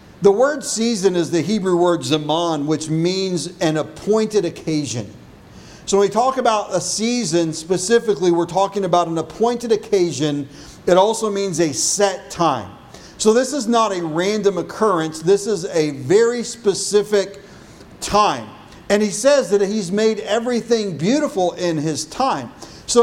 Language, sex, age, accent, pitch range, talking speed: English, male, 50-69, American, 165-220 Hz, 150 wpm